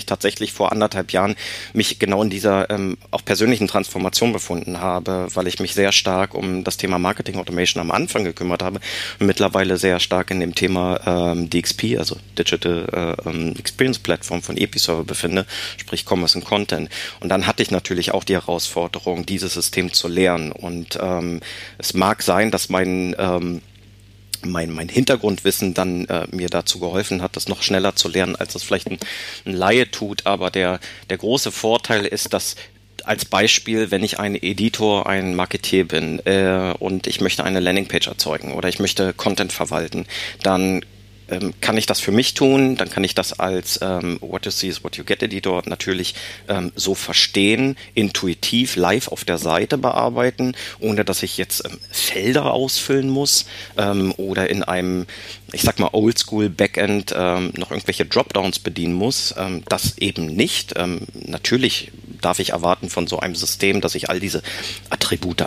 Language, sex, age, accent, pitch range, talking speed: German, male, 30-49, German, 90-100 Hz, 175 wpm